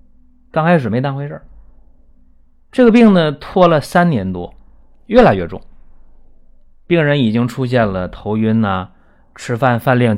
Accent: native